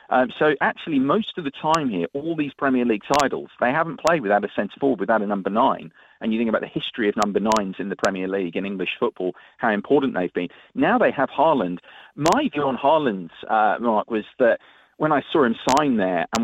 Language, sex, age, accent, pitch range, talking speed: English, male, 40-59, British, 120-190 Hz, 225 wpm